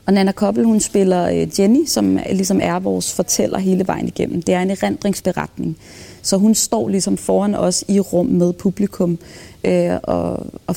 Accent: native